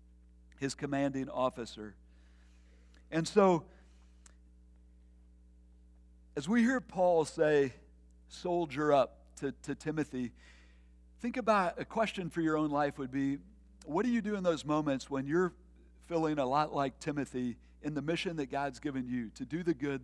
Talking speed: 150 wpm